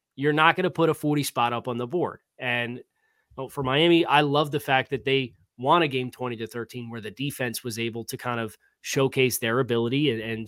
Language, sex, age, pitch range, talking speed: English, male, 30-49, 115-140 Hz, 230 wpm